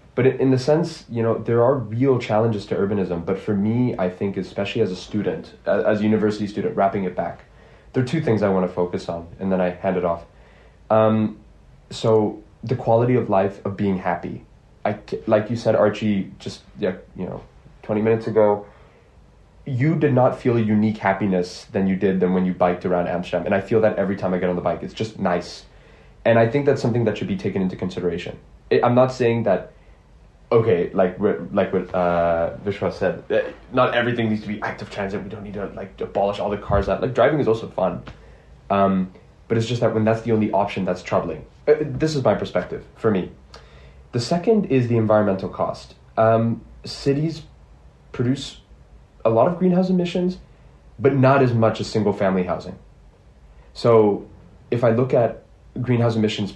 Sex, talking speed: male, 195 wpm